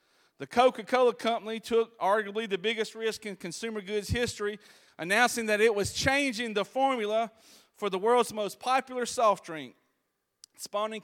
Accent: American